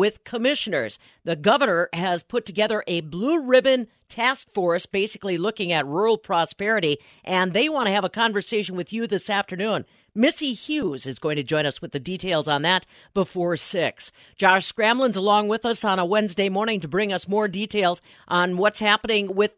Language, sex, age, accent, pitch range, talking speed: English, female, 50-69, American, 175-225 Hz, 185 wpm